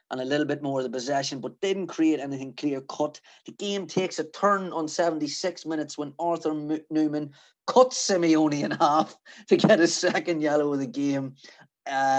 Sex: male